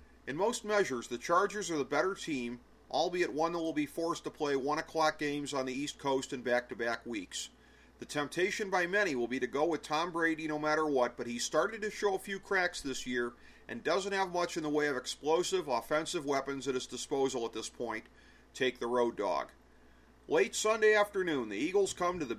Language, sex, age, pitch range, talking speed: English, male, 40-59, 135-185 Hz, 215 wpm